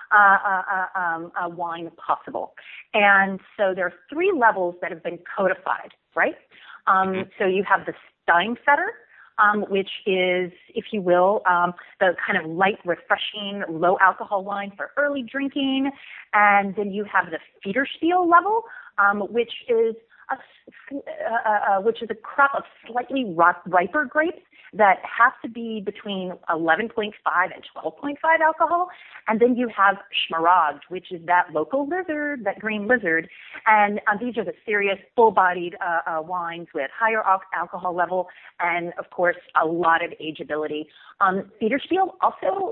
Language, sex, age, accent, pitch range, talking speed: English, female, 30-49, American, 180-275 Hz, 150 wpm